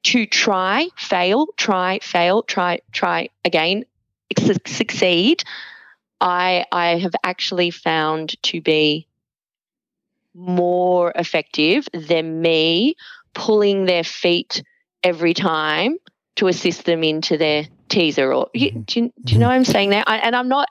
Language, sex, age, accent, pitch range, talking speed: English, female, 20-39, Australian, 165-220 Hz, 135 wpm